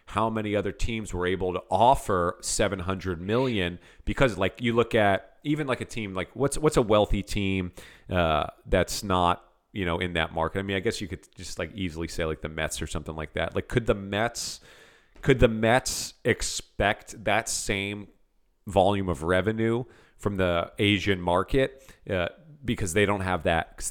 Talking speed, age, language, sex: 185 wpm, 40-59, English, male